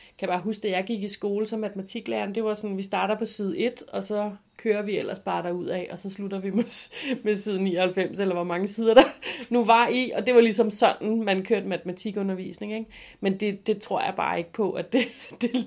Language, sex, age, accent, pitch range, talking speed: Danish, female, 30-49, native, 180-225 Hz, 250 wpm